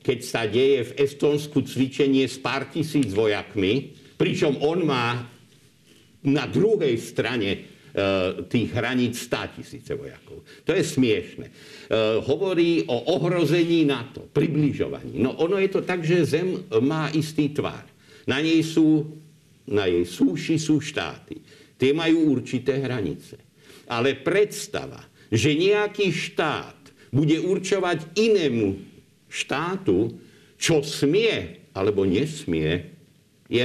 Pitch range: 125-165 Hz